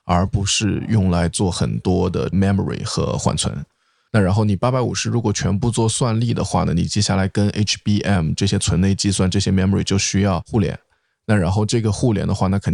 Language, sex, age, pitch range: Chinese, male, 20-39, 95-115 Hz